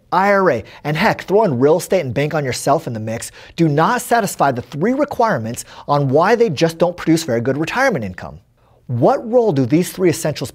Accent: American